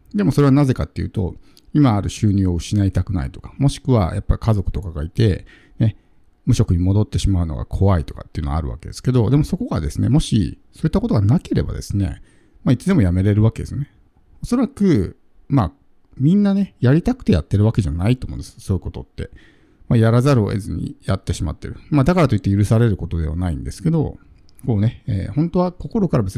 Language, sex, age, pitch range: Japanese, male, 50-69, 95-125 Hz